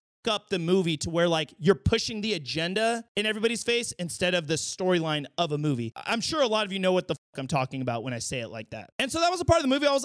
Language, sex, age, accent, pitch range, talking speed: English, male, 30-49, American, 170-230 Hz, 300 wpm